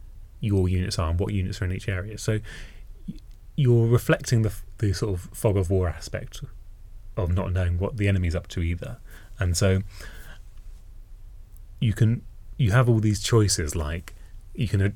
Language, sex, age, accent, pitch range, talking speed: English, male, 30-49, British, 90-115 Hz, 170 wpm